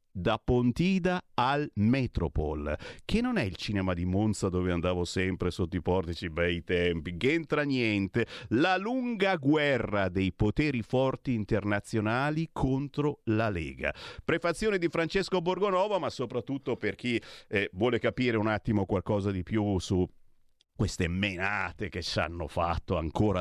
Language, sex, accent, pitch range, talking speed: Italian, male, native, 95-160 Hz, 145 wpm